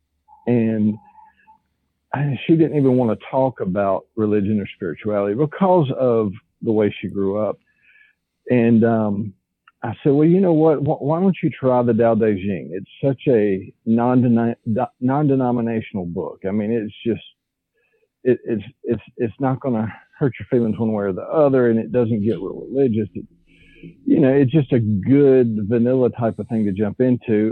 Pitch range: 105-140 Hz